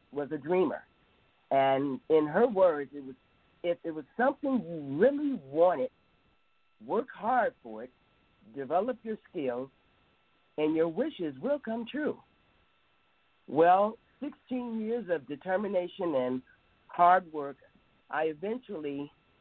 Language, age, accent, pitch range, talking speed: English, 50-69, American, 135-185 Hz, 120 wpm